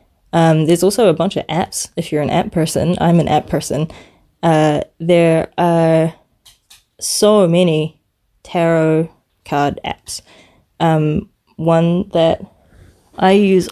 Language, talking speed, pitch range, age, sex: English, 125 wpm, 150-180 Hz, 20-39, female